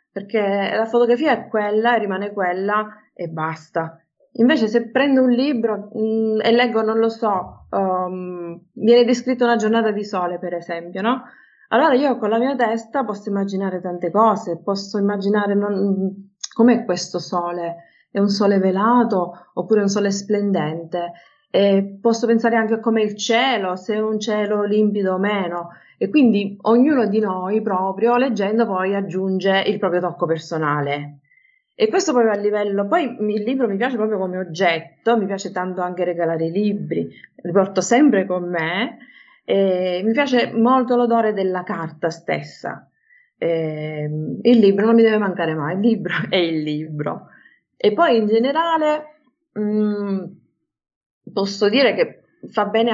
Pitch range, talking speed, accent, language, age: 180-230 Hz, 160 wpm, native, Italian, 20-39